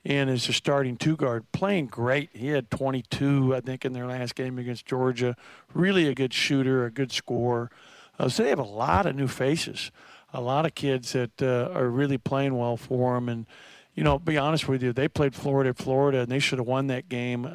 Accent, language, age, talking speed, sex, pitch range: American, English, 50-69, 220 wpm, male, 125-140 Hz